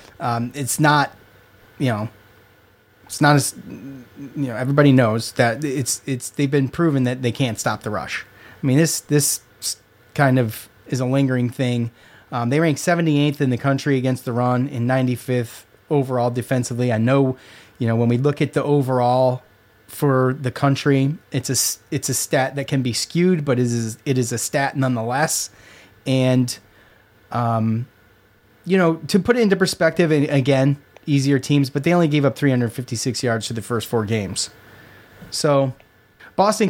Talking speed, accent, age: 175 wpm, American, 30-49